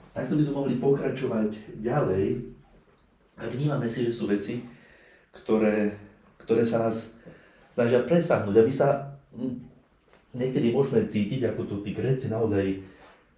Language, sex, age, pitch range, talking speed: Slovak, male, 30-49, 100-125 Hz, 130 wpm